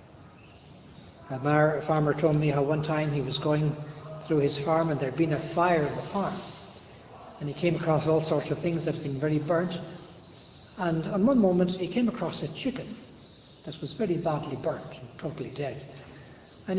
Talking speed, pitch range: 190 wpm, 150-185 Hz